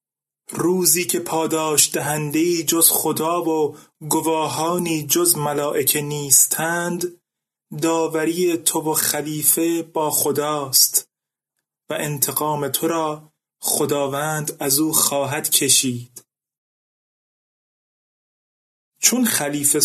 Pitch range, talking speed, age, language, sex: 140-175 Hz, 85 wpm, 30-49, Persian, male